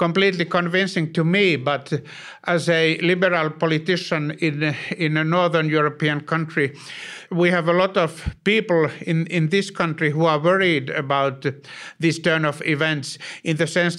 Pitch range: 155-180 Hz